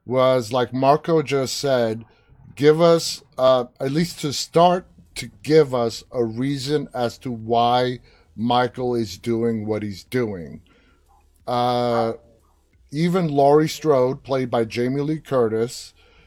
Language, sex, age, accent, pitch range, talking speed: English, male, 30-49, American, 115-150 Hz, 130 wpm